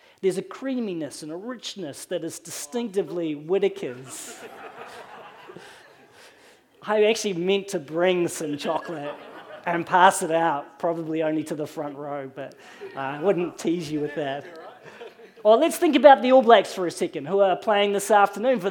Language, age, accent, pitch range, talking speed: English, 40-59, Australian, 180-265 Hz, 160 wpm